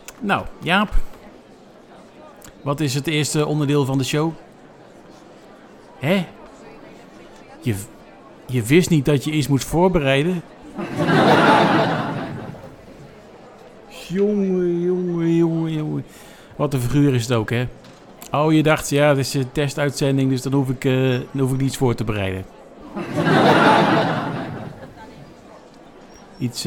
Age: 50-69